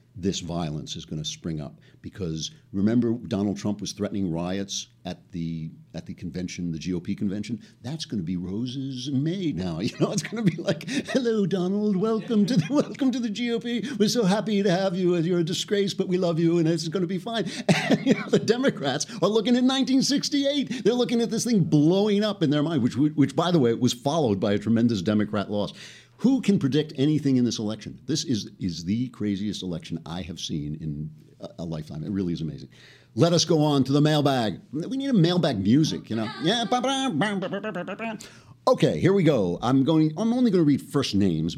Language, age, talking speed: English, 60-79, 215 wpm